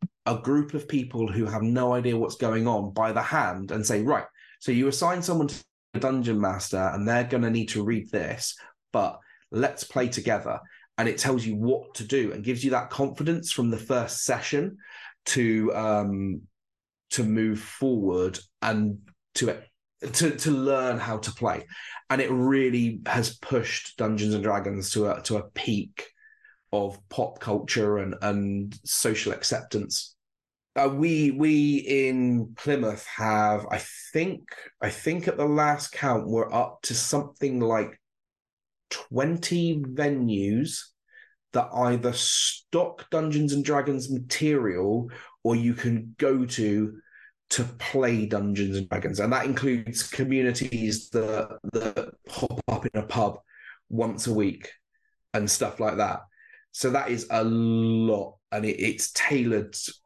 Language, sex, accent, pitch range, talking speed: English, male, British, 110-140 Hz, 150 wpm